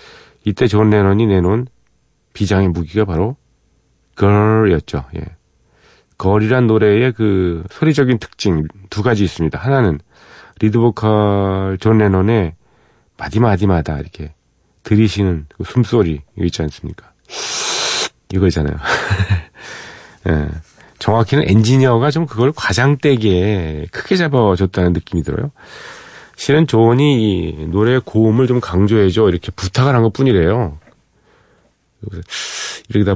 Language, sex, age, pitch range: Korean, male, 40-59, 90-125 Hz